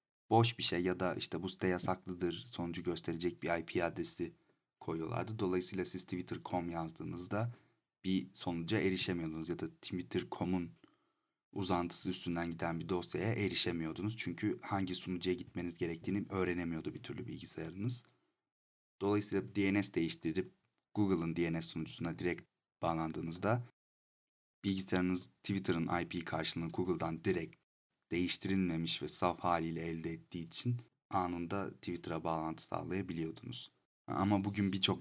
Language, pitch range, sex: Turkish, 85-95 Hz, male